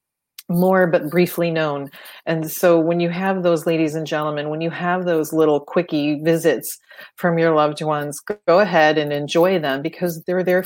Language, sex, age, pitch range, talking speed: English, female, 40-59, 160-180 Hz, 180 wpm